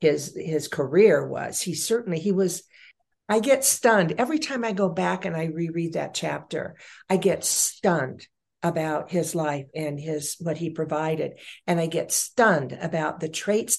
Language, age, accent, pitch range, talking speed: English, 60-79, American, 160-210 Hz, 170 wpm